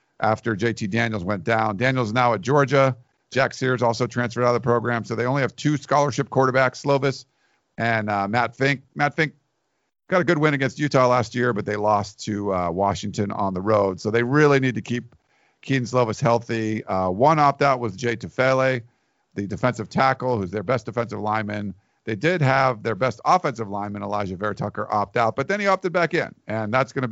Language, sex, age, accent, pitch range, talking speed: English, male, 50-69, American, 105-130 Hz, 210 wpm